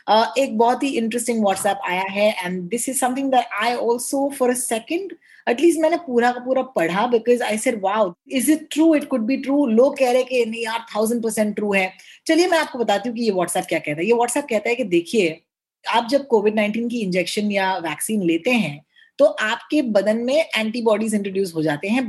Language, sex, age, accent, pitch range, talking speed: Hindi, female, 20-39, native, 210-270 Hz, 160 wpm